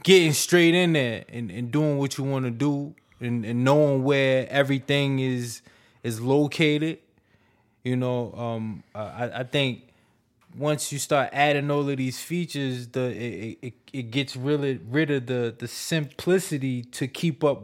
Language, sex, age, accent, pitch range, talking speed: English, male, 20-39, American, 115-140 Hz, 165 wpm